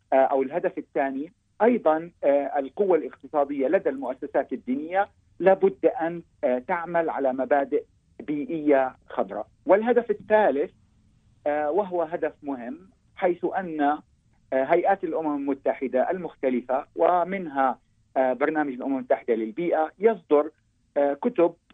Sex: male